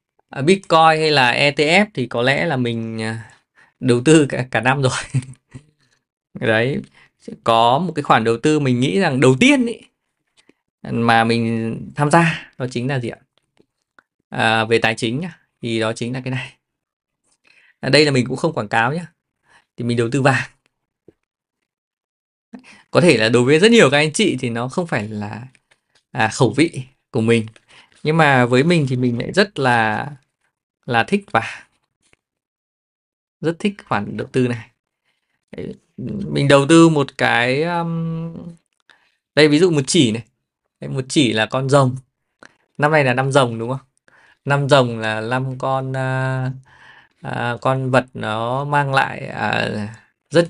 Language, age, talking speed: Vietnamese, 20-39, 155 wpm